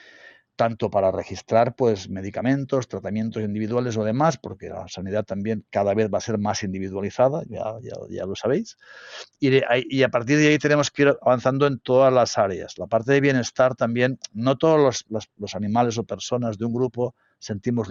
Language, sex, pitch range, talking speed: Spanish, male, 105-130 Hz, 180 wpm